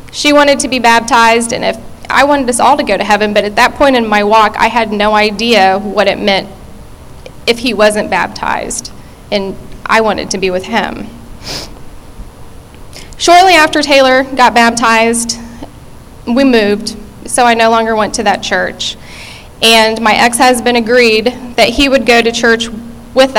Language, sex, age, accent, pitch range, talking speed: English, female, 10-29, American, 210-240 Hz, 170 wpm